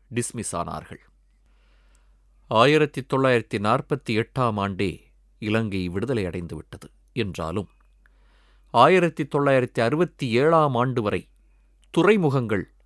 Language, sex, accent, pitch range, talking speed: Tamil, male, native, 100-150 Hz, 75 wpm